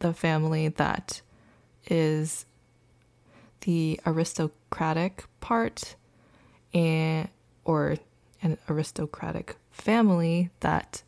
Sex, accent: female, American